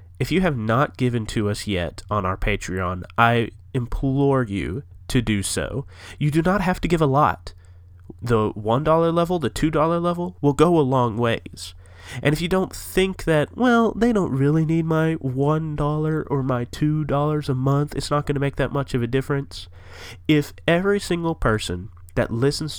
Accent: American